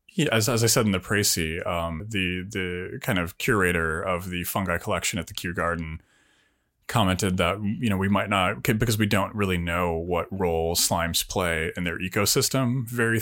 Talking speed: 190 wpm